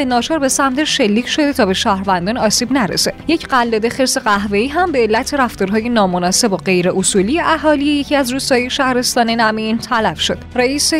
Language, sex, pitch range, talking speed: Persian, female, 200-265 Hz, 170 wpm